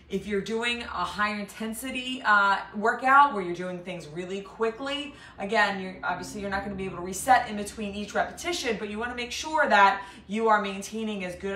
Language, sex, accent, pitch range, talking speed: English, female, American, 180-225 Hz, 215 wpm